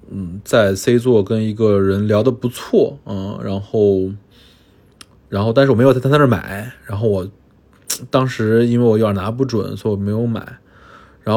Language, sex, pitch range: Chinese, male, 100-120 Hz